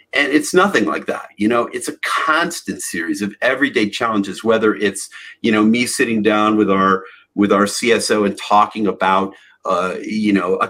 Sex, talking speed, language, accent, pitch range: male, 185 wpm, English, American, 100-120 Hz